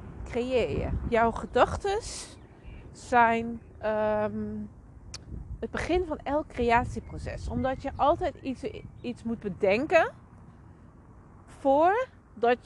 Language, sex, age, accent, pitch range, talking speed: Dutch, female, 40-59, Dutch, 175-255 Hz, 75 wpm